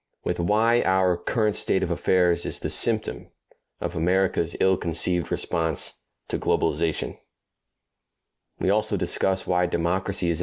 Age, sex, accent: 20-39, male, American